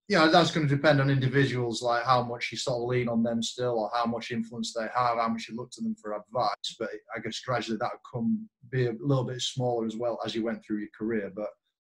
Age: 20-39